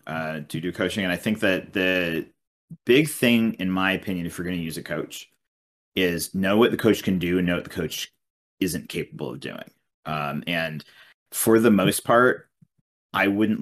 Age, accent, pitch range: 30-49, American, 85-105 Hz